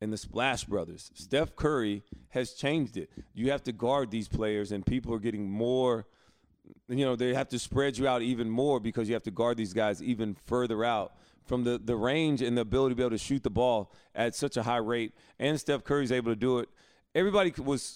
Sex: male